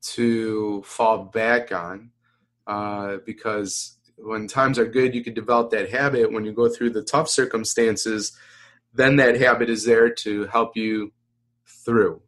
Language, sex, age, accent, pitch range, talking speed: English, male, 20-39, American, 105-120 Hz, 150 wpm